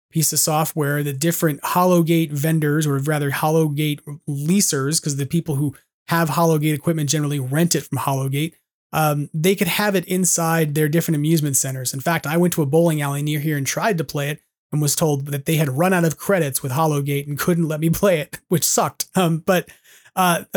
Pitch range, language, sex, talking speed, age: 150-180 Hz, English, male, 205 wpm, 30-49